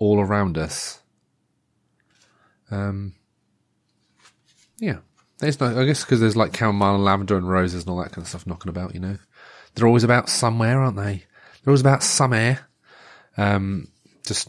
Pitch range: 95-120 Hz